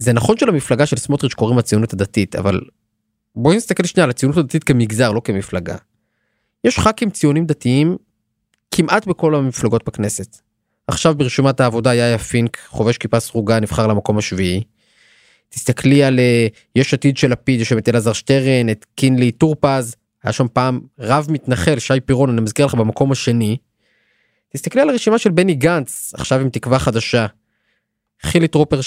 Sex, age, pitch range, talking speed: male, 20-39, 115-150 Hz, 140 wpm